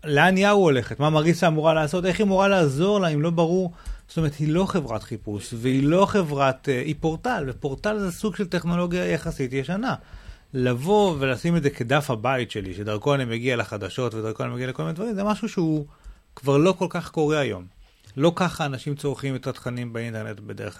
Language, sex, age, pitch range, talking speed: Hebrew, male, 30-49, 120-160 Hz, 190 wpm